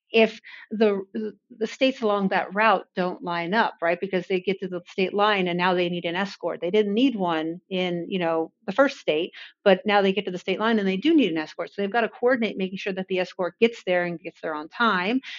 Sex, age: female, 50-69